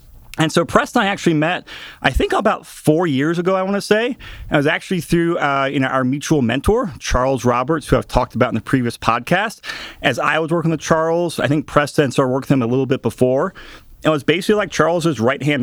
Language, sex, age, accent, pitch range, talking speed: English, male, 30-49, American, 125-160 Hz, 235 wpm